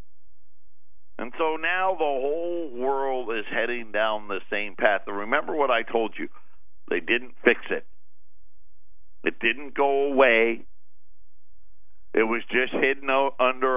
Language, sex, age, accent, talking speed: English, male, 50-69, American, 135 wpm